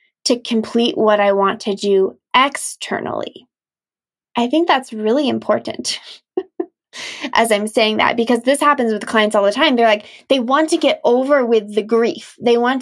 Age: 20-39